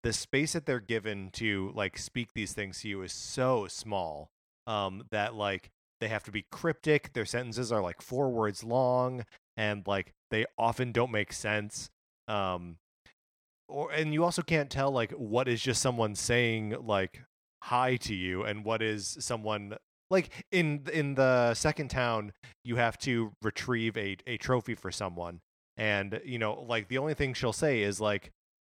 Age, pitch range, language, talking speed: 30-49, 105-125 Hz, English, 175 wpm